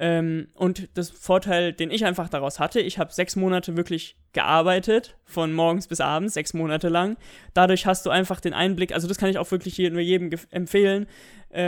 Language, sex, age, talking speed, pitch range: German, male, 20-39, 185 wpm, 165-195 Hz